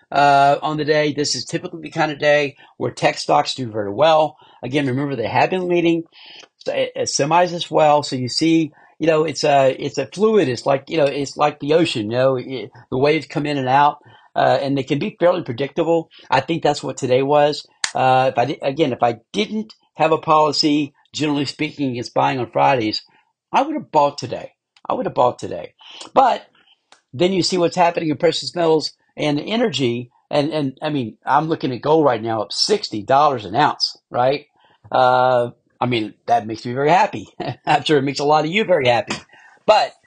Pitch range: 125-160 Hz